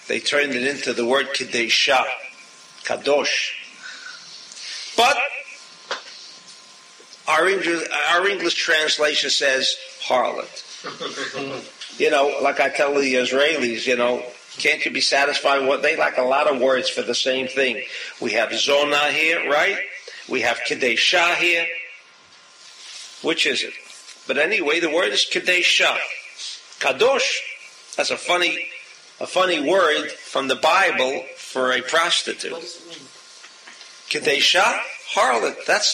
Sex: male